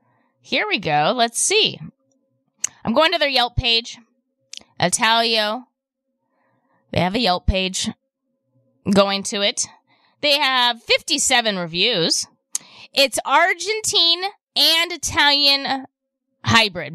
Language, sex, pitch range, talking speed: English, female, 200-285 Hz, 105 wpm